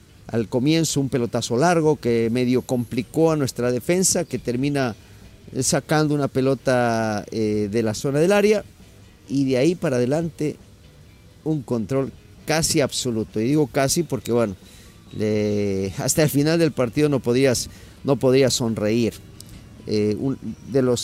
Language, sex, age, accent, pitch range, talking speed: English, male, 50-69, Mexican, 115-140 Hz, 130 wpm